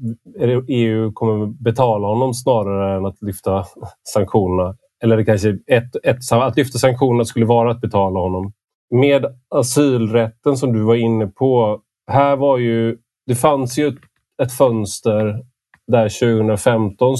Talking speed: 140 wpm